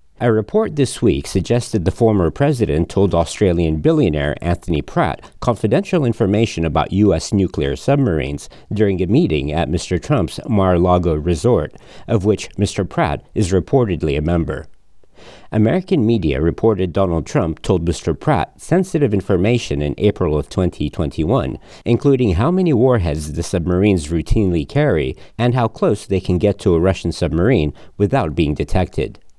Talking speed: 145 wpm